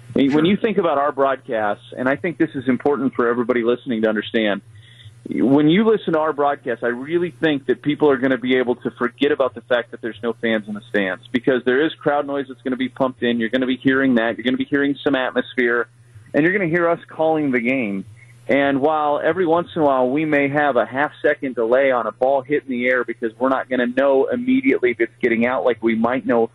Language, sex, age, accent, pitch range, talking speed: English, male, 40-59, American, 120-145 Hz, 260 wpm